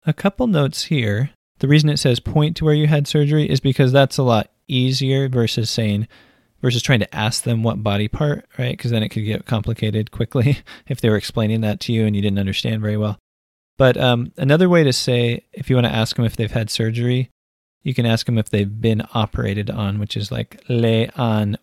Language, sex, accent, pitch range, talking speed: English, male, American, 105-135 Hz, 225 wpm